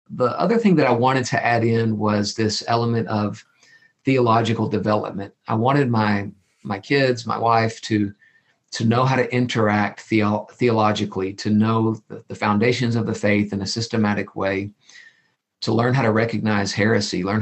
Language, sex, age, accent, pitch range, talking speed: English, male, 50-69, American, 105-115 Hz, 170 wpm